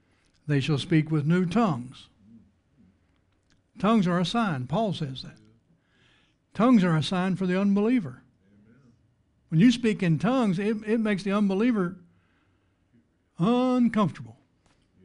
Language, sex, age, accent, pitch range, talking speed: English, male, 60-79, American, 120-200 Hz, 125 wpm